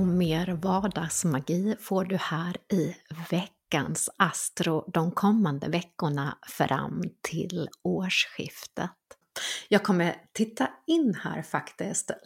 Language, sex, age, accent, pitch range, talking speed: Swedish, female, 30-49, native, 165-200 Hz, 105 wpm